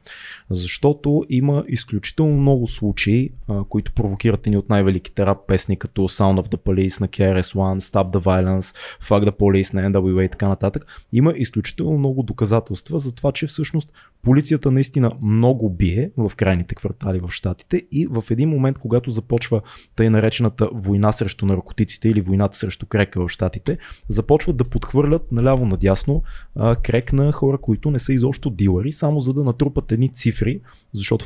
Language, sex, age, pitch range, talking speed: Bulgarian, male, 20-39, 100-135 Hz, 165 wpm